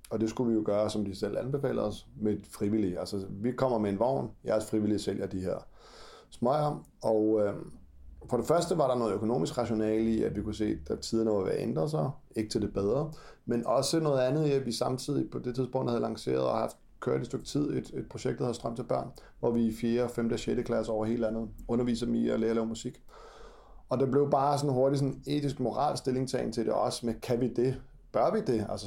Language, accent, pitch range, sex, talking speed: Danish, native, 105-125 Hz, male, 245 wpm